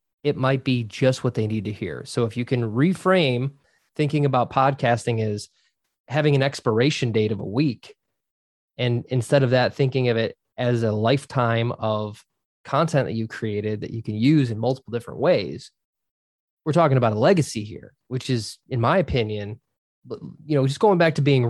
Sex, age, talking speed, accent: male, 20-39, 185 wpm, American